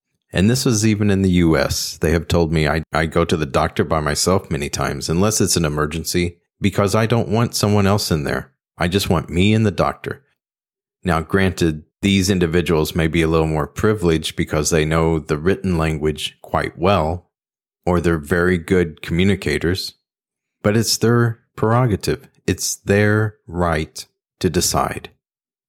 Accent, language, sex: American, English, male